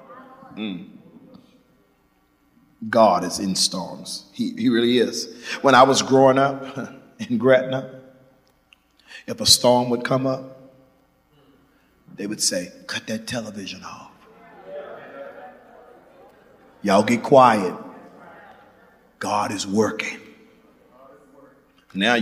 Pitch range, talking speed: 100-150 Hz, 95 wpm